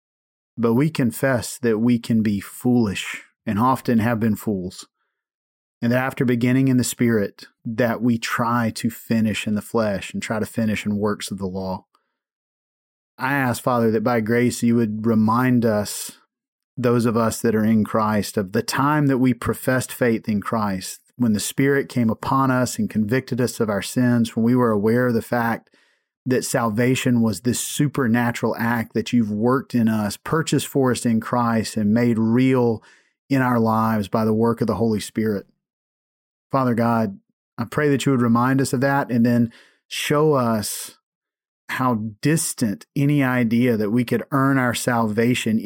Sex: male